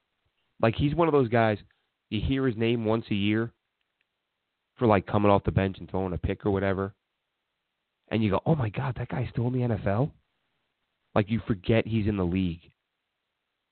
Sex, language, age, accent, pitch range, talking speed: male, English, 30-49, American, 95-125 Hz, 190 wpm